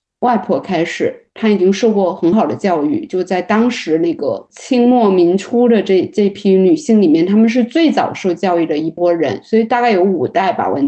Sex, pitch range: female, 195-275 Hz